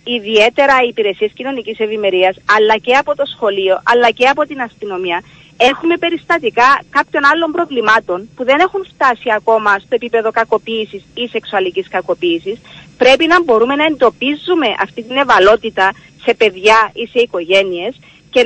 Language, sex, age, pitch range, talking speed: Greek, female, 30-49, 195-265 Hz, 145 wpm